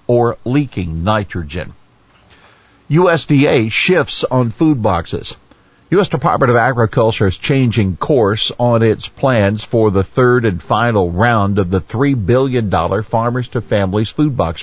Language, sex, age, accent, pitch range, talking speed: English, male, 50-69, American, 95-120 Hz, 135 wpm